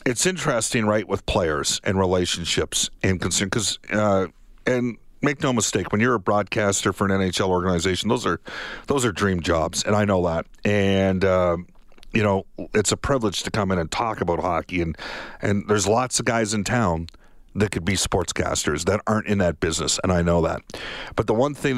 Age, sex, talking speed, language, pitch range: 50-69, male, 200 wpm, English, 90-105 Hz